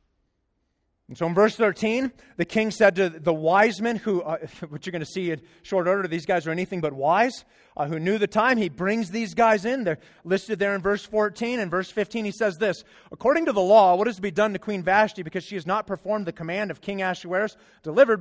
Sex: male